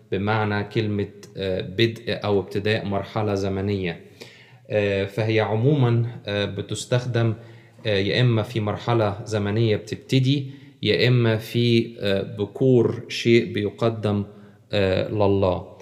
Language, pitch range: Arabic, 100-115 Hz